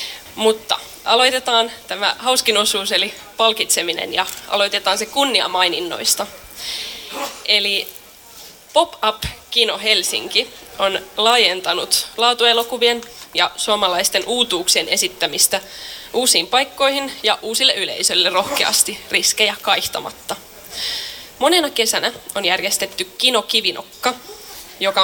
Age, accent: 20-39, native